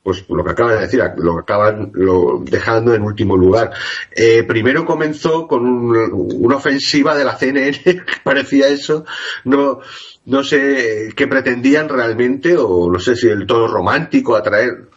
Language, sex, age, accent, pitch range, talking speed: Spanish, male, 40-59, Spanish, 90-130 Hz, 160 wpm